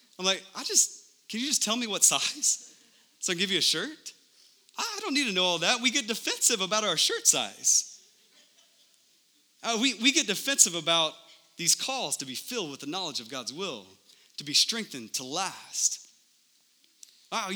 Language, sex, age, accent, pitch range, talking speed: English, male, 30-49, American, 145-215 Hz, 190 wpm